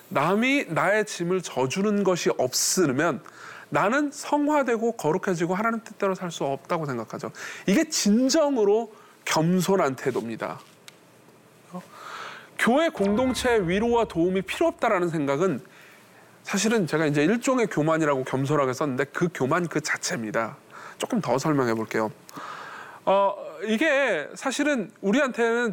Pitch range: 175-275 Hz